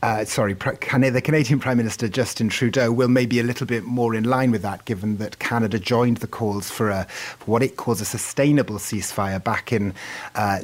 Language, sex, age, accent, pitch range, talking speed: English, male, 30-49, British, 105-125 Hz, 205 wpm